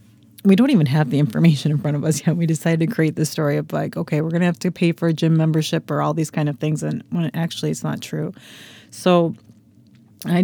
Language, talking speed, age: English, 245 wpm, 30-49